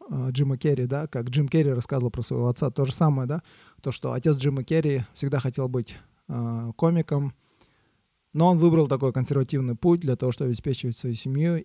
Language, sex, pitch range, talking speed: Russian, male, 125-150 Hz, 185 wpm